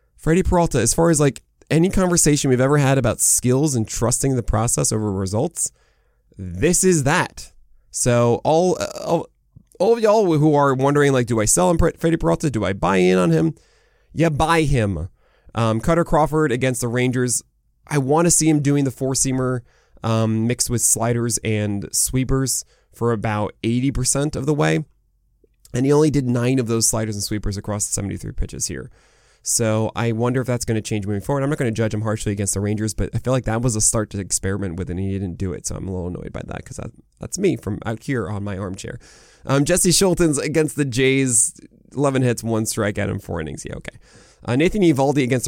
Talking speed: 215 wpm